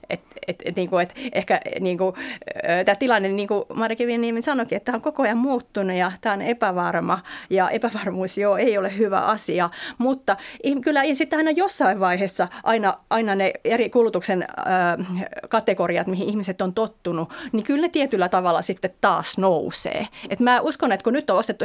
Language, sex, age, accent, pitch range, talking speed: Finnish, female, 30-49, native, 185-245 Hz, 170 wpm